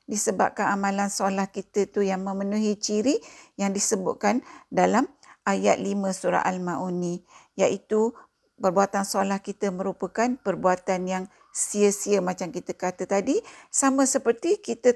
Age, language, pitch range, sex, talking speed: 50-69, Malay, 195-235 Hz, female, 120 wpm